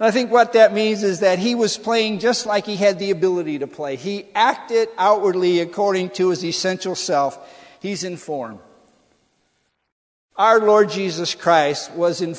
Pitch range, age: 155-210 Hz, 50-69